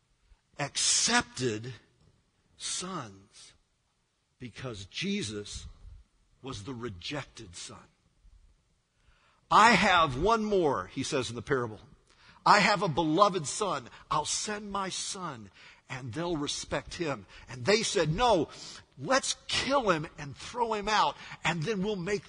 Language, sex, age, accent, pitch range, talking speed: English, male, 50-69, American, 125-190 Hz, 120 wpm